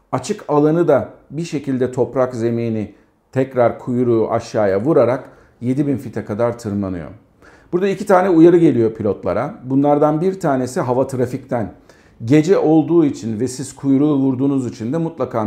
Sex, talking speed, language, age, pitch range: male, 140 wpm, Turkish, 50-69, 115-155 Hz